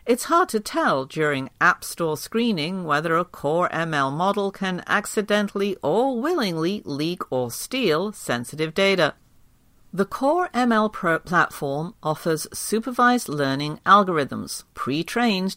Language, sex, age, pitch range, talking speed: English, female, 50-69, 150-215 Hz, 120 wpm